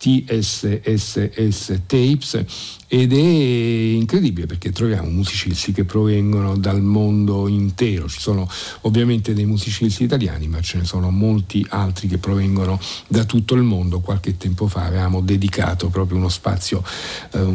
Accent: native